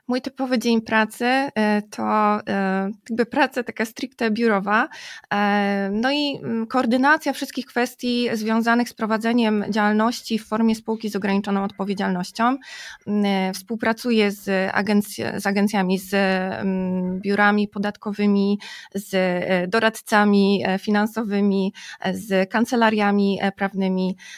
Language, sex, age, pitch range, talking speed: Polish, female, 20-39, 200-240 Hz, 95 wpm